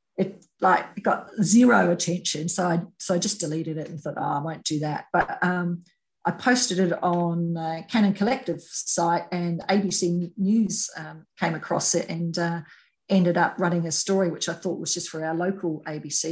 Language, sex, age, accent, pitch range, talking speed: English, female, 40-59, Australian, 165-195 Hz, 190 wpm